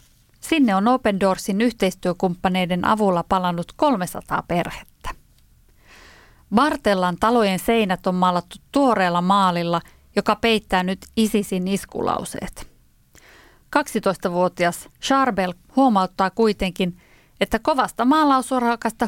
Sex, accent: female, native